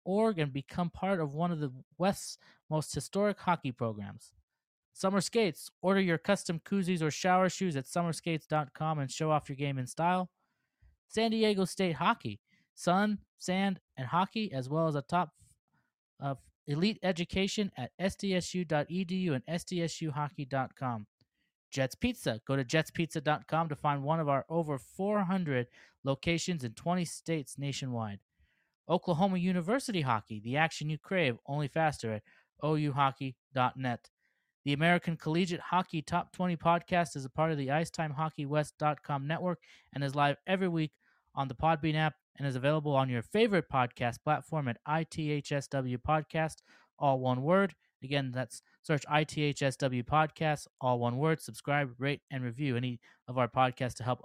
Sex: male